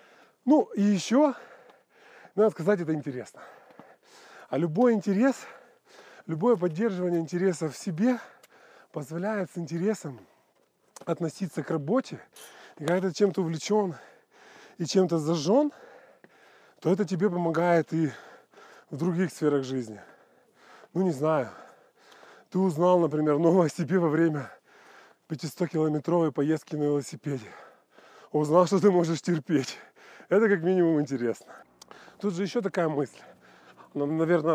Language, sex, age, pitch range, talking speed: Russian, male, 20-39, 150-185 Hz, 115 wpm